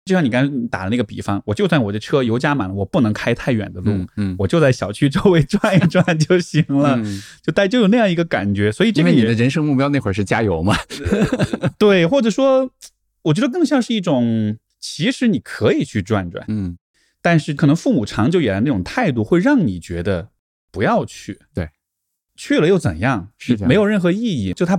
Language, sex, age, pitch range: Chinese, male, 20-39, 105-155 Hz